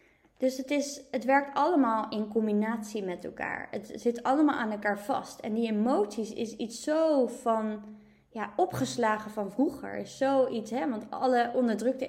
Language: Dutch